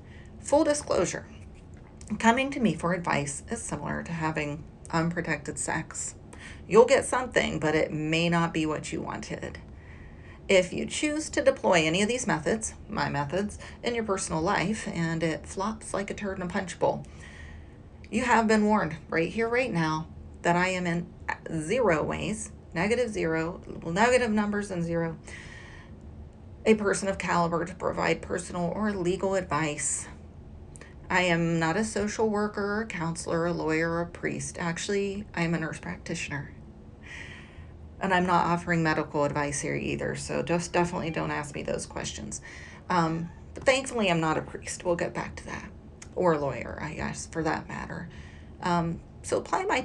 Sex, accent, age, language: female, American, 40-59, English